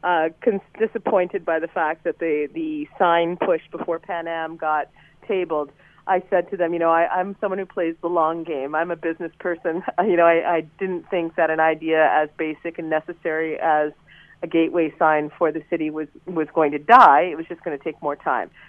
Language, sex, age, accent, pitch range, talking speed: English, female, 40-59, American, 160-185 Hz, 210 wpm